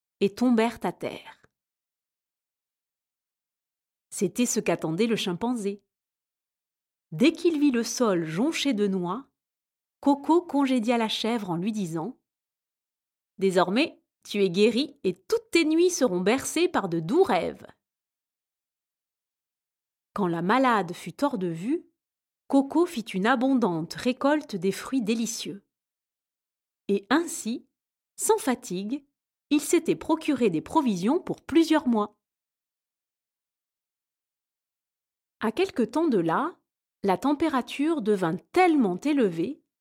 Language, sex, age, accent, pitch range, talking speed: French, female, 30-49, French, 200-300 Hz, 115 wpm